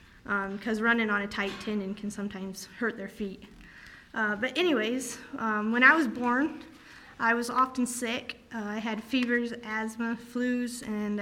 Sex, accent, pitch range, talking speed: female, American, 215-250 Hz, 165 wpm